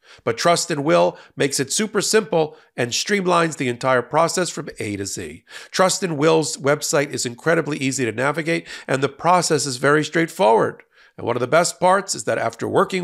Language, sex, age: English, male, 50-69